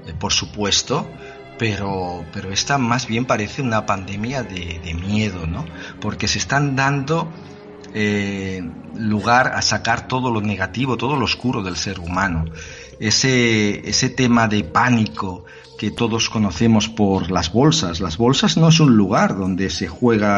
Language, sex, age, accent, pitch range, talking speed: Spanish, male, 50-69, Spanish, 90-115 Hz, 150 wpm